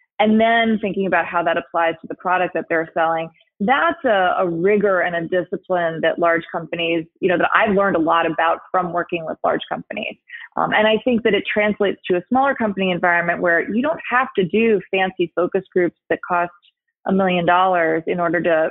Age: 30-49